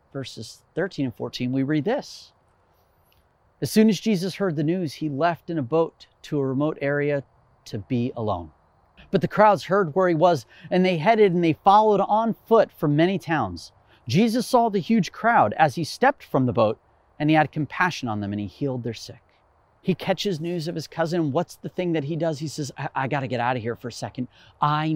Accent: American